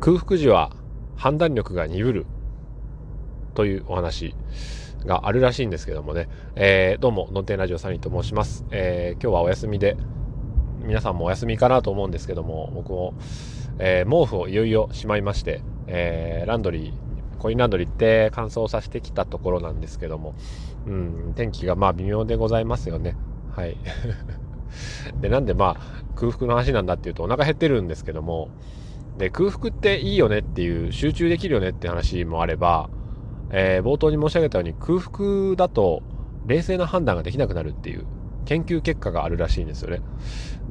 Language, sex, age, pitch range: Japanese, male, 20-39, 90-130 Hz